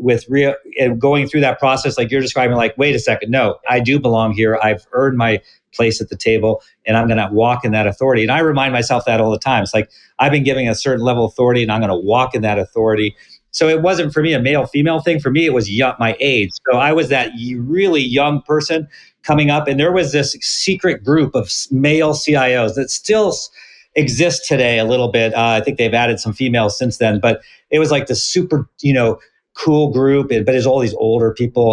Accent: American